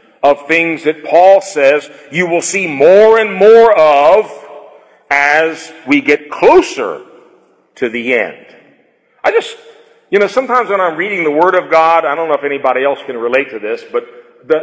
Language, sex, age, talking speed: English, male, 50-69, 175 wpm